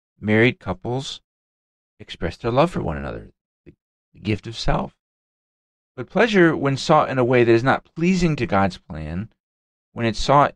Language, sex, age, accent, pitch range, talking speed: English, male, 40-59, American, 90-115 Hz, 165 wpm